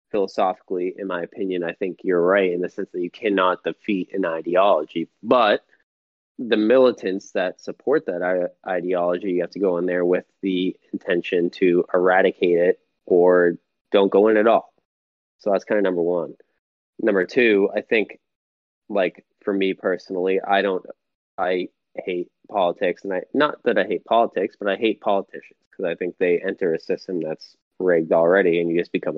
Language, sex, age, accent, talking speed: English, male, 20-39, American, 175 wpm